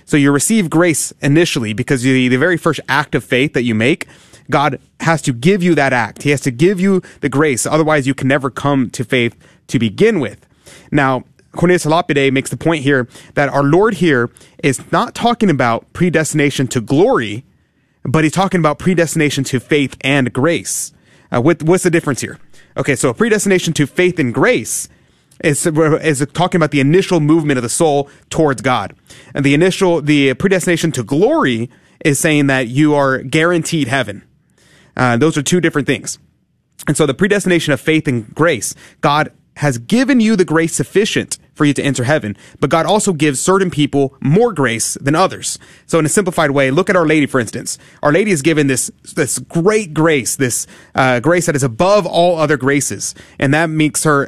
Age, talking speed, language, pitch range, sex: 30-49, 195 wpm, English, 130-165 Hz, male